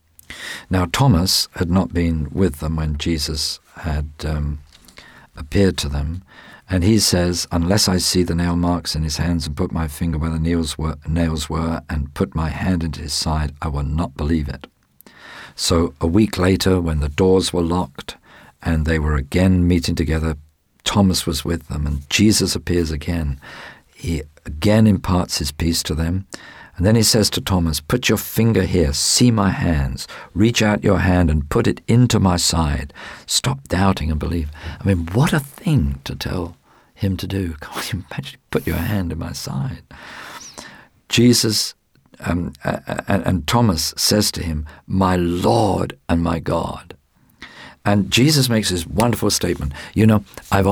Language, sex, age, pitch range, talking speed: English, male, 50-69, 80-95 Hz, 170 wpm